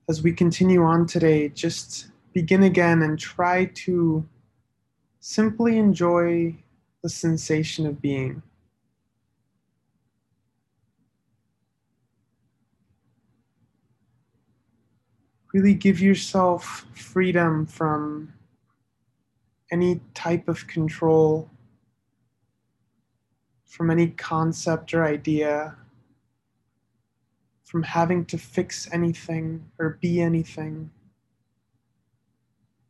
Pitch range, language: 125-170 Hz, English